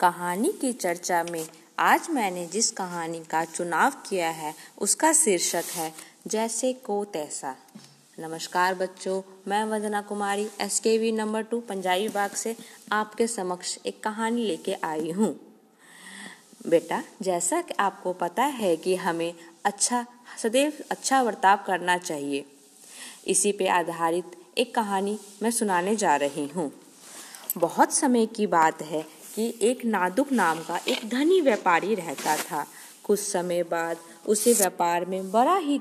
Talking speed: 140 wpm